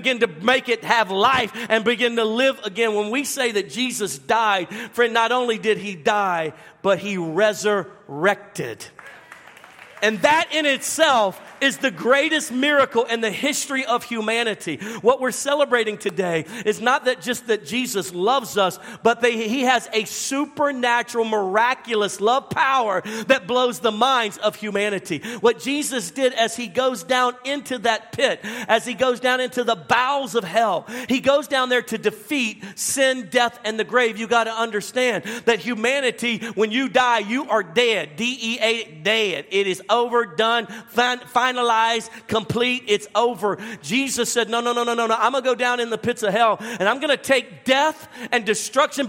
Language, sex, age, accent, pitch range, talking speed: English, male, 50-69, American, 215-255 Hz, 180 wpm